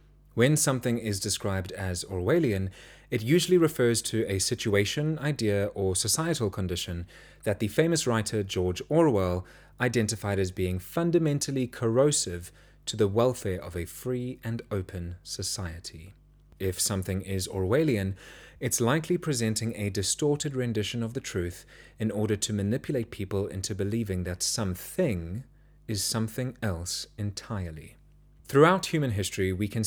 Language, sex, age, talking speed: English, male, 30-49, 135 wpm